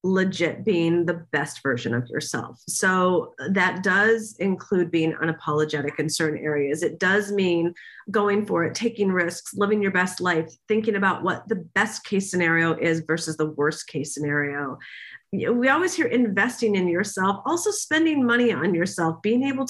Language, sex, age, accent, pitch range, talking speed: English, female, 40-59, American, 160-205 Hz, 165 wpm